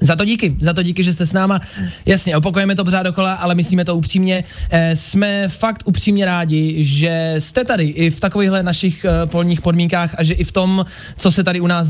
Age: 20-39